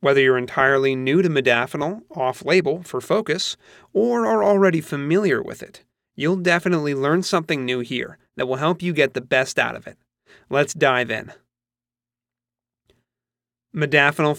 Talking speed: 145 wpm